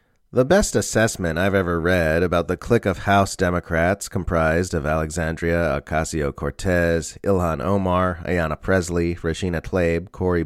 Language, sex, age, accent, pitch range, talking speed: English, male, 30-49, American, 85-110 Hz, 130 wpm